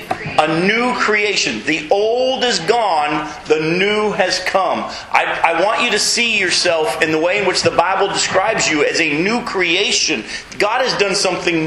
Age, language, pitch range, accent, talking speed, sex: 40-59, English, 175-220 Hz, American, 180 wpm, male